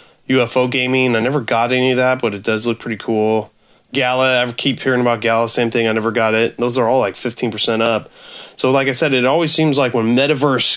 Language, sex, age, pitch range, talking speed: English, male, 30-49, 105-125 Hz, 235 wpm